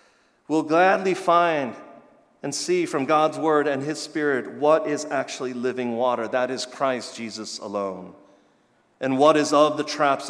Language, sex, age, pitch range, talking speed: English, male, 40-59, 120-150 Hz, 165 wpm